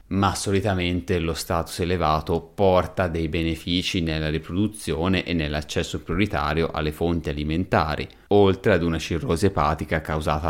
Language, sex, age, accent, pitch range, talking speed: Italian, male, 30-49, native, 80-125 Hz, 125 wpm